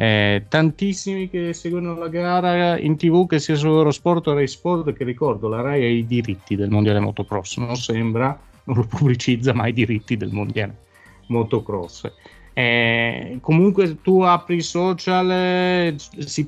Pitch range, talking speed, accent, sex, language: 100-155 Hz, 155 wpm, native, male, Italian